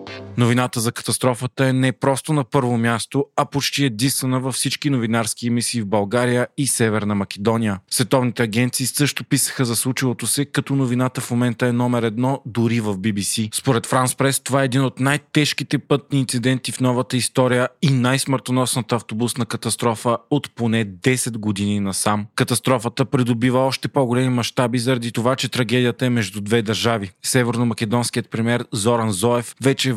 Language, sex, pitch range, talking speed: Bulgarian, male, 115-130 Hz, 150 wpm